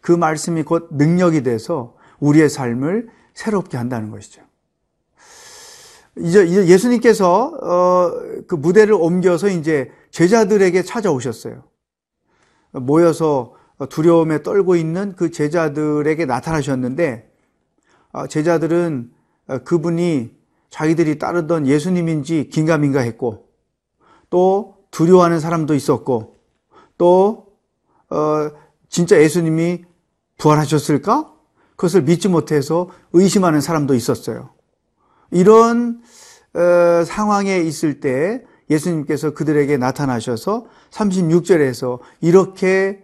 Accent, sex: native, male